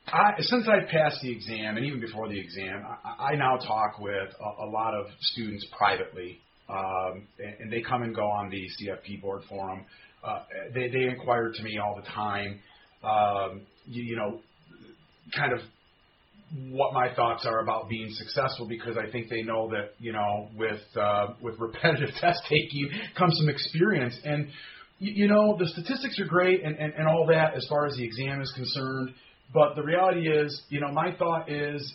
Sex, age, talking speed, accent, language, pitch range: male, 30-49, 190 wpm, American, English, 115-150 Hz